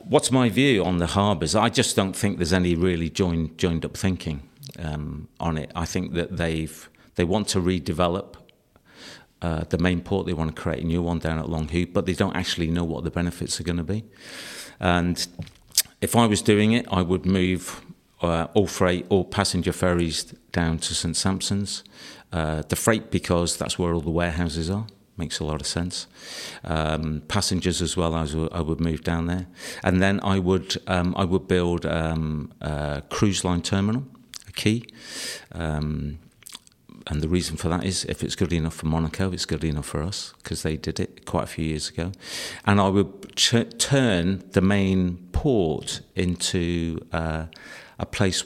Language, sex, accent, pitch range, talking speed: English, male, British, 80-95 Hz, 190 wpm